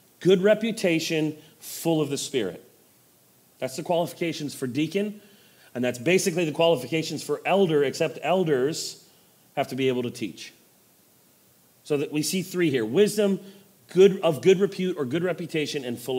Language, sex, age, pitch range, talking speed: English, male, 30-49, 165-220 Hz, 155 wpm